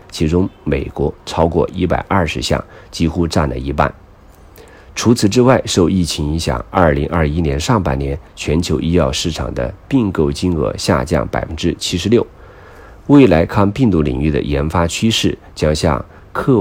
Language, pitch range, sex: Chinese, 75-100 Hz, male